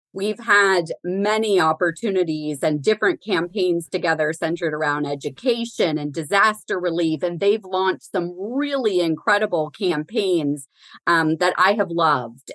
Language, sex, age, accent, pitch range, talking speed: English, female, 30-49, American, 155-185 Hz, 125 wpm